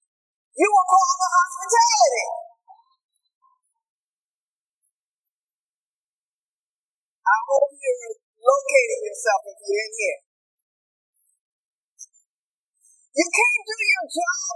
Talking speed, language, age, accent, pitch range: 80 wpm, English, 30-49, American, 295-425 Hz